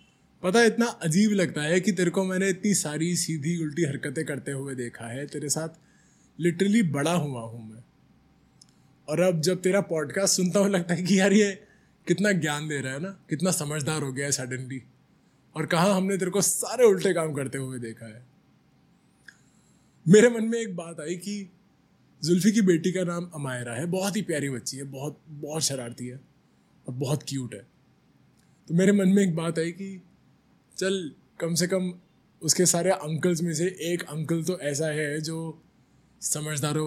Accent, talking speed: native, 185 wpm